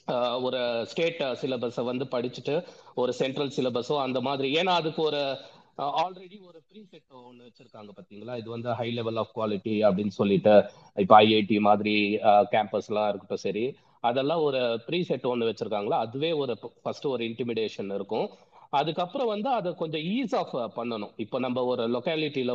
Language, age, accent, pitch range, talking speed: Tamil, 30-49, native, 120-150 Hz, 150 wpm